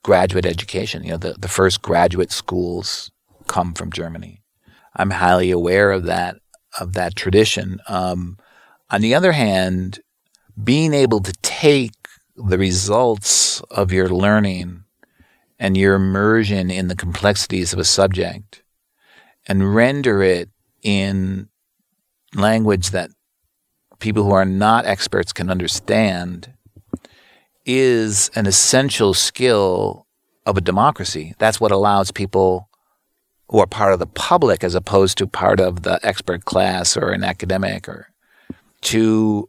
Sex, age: male, 50-69